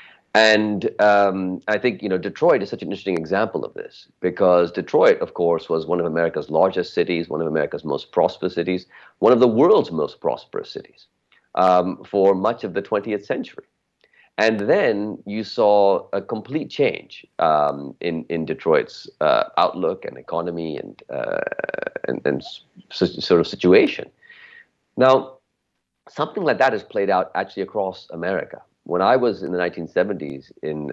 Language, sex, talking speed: English, male, 160 wpm